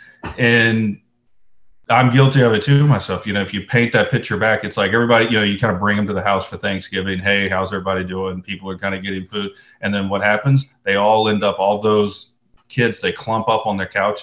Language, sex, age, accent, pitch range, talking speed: English, male, 30-49, American, 95-110 Hz, 240 wpm